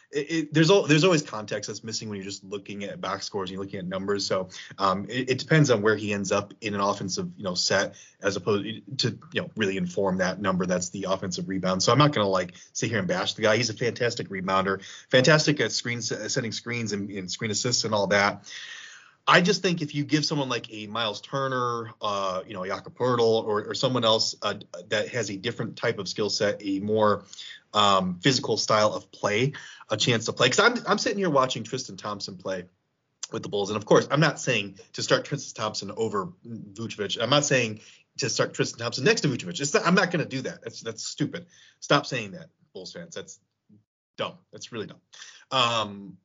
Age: 30-49